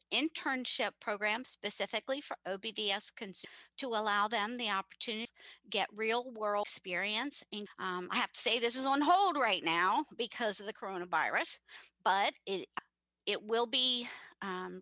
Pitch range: 185-235 Hz